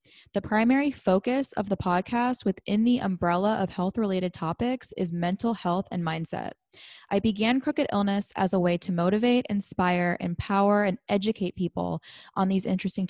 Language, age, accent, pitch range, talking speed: English, 10-29, American, 180-215 Hz, 160 wpm